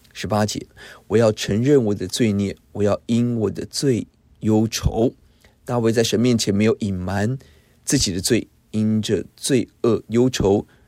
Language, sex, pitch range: Chinese, male, 100-125 Hz